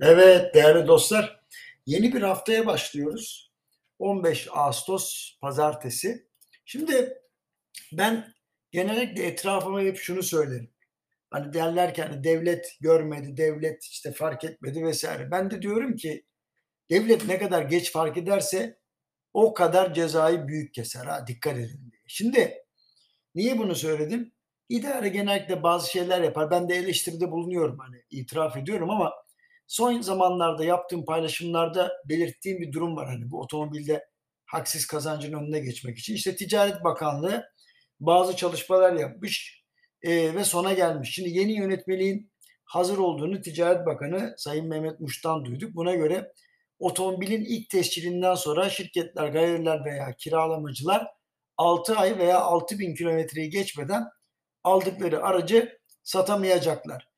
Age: 60-79